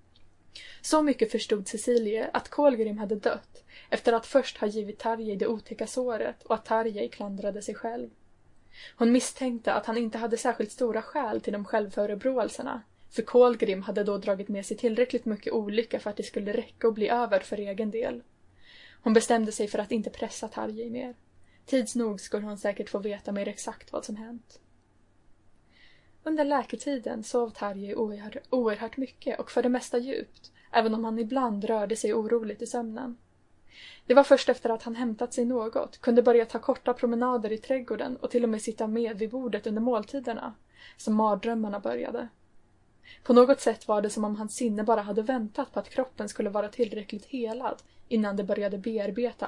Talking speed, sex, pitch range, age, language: 180 wpm, female, 215-245 Hz, 10-29, Swedish